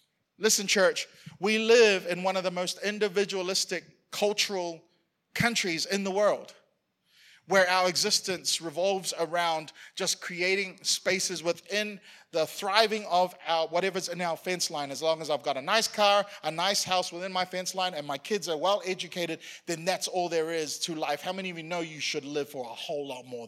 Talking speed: 190 wpm